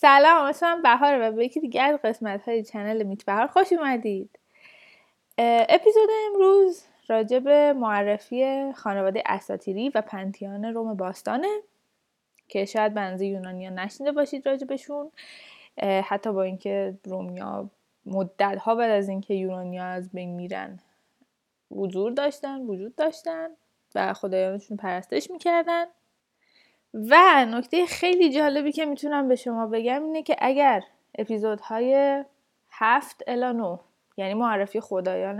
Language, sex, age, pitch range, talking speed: Persian, female, 20-39, 200-285 Hz, 120 wpm